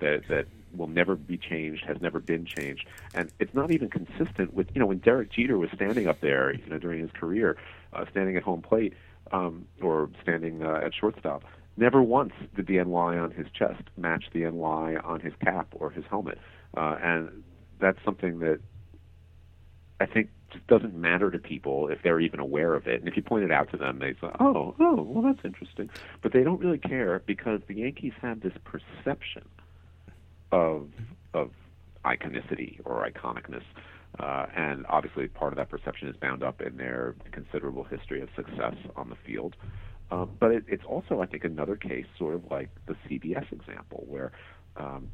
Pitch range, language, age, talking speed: 80-95 Hz, English, 40-59, 190 wpm